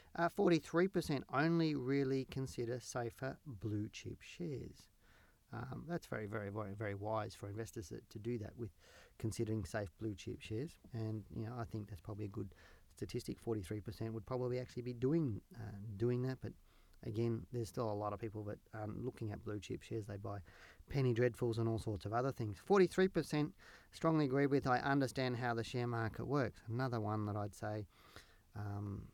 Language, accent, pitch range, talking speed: English, Australian, 105-125 Hz, 175 wpm